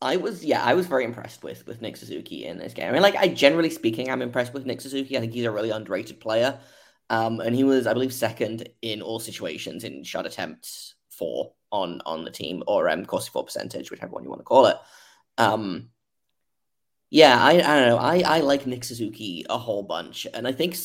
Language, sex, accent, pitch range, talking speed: English, male, British, 115-135 Hz, 225 wpm